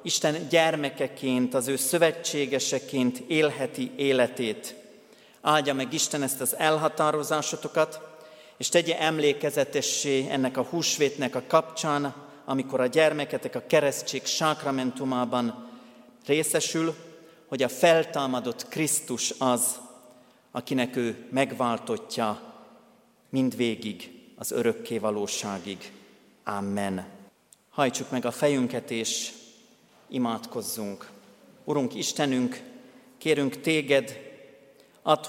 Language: Hungarian